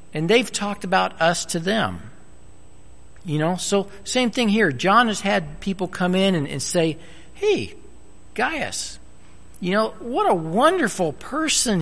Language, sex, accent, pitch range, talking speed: English, male, American, 125-195 Hz, 150 wpm